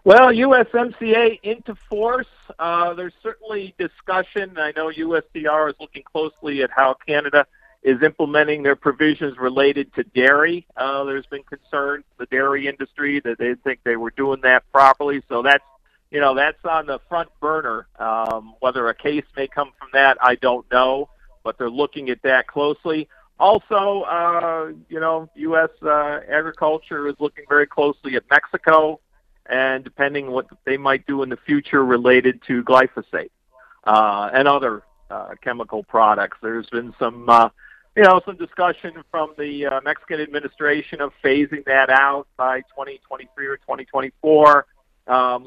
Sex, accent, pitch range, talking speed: male, American, 130-155 Hz, 155 wpm